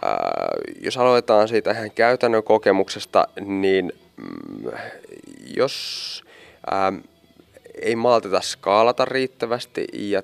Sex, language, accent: male, Finnish, native